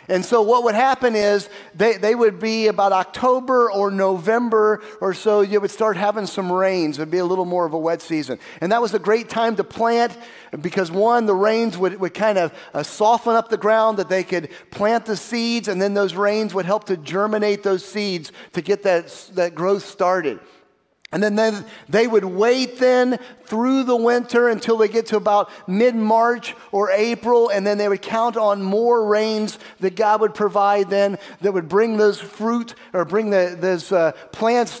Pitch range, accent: 190-230 Hz, American